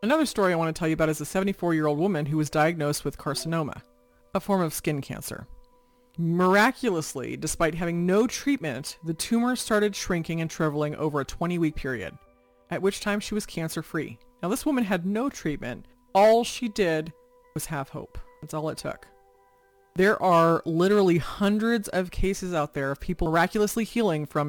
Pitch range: 150-210 Hz